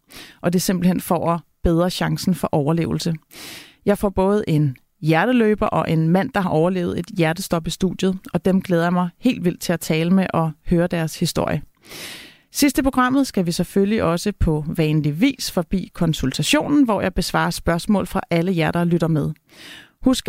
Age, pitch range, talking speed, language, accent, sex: 30-49, 165-210 Hz, 185 wpm, Danish, native, female